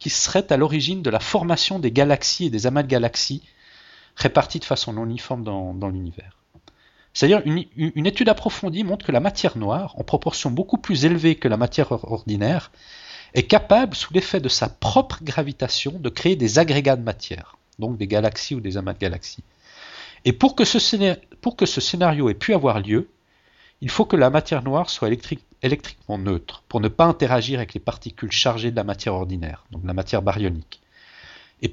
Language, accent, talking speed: French, French, 195 wpm